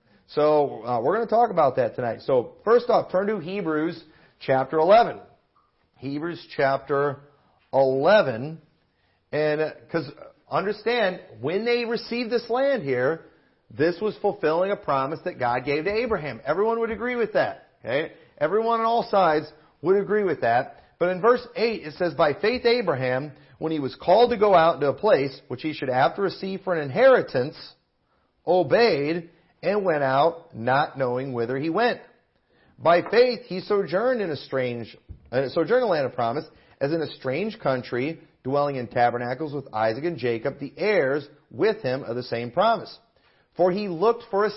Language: English